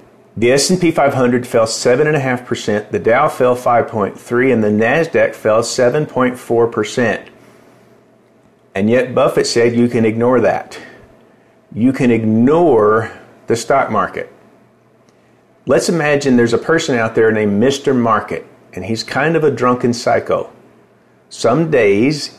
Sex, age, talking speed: male, 50-69, 125 wpm